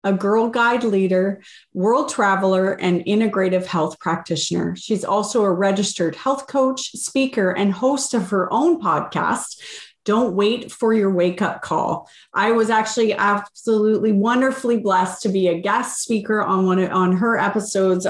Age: 30-49